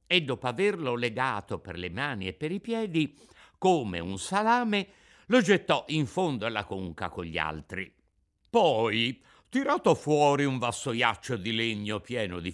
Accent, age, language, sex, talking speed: native, 60-79, Italian, male, 155 wpm